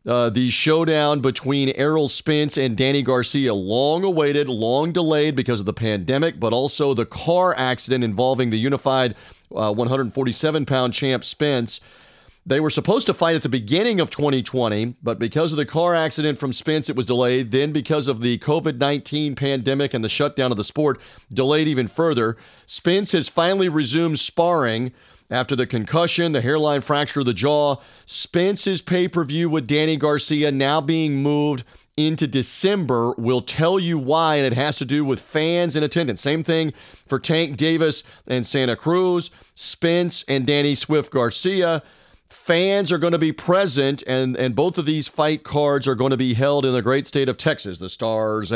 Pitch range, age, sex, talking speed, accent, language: 125-155 Hz, 40-59, male, 175 wpm, American, English